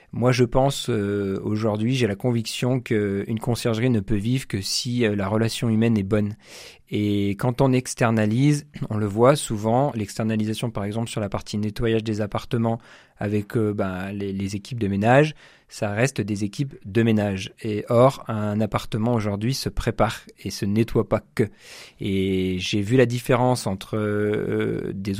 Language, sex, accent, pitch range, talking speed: French, male, French, 105-125 Hz, 170 wpm